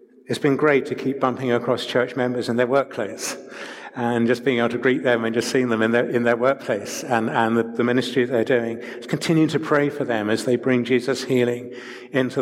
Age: 60-79